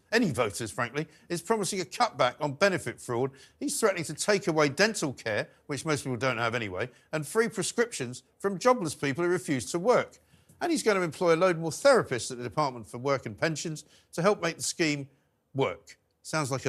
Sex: male